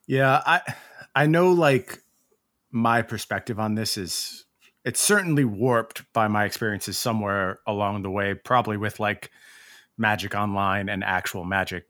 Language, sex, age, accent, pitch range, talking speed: English, male, 30-49, American, 100-125 Hz, 140 wpm